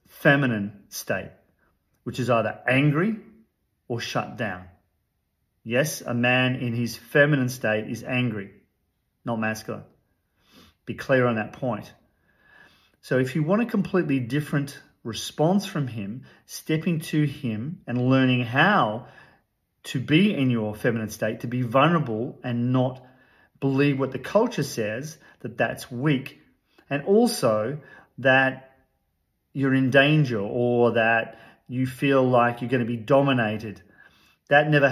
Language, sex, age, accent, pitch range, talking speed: English, male, 40-59, Australian, 115-145 Hz, 130 wpm